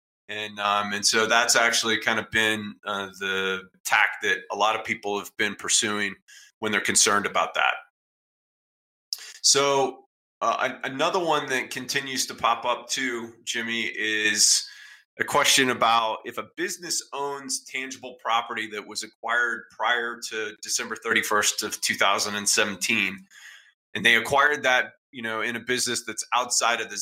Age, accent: 30-49, American